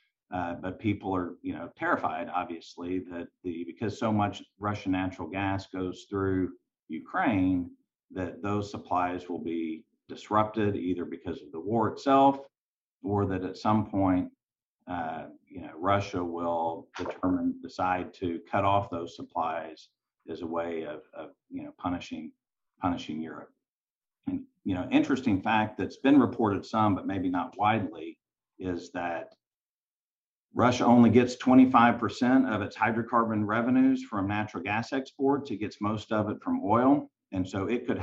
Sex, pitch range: male, 90-130 Hz